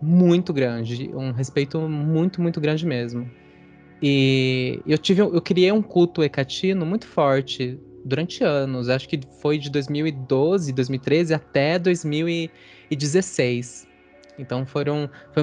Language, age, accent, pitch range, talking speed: Portuguese, 20-39, Brazilian, 130-165 Hz, 125 wpm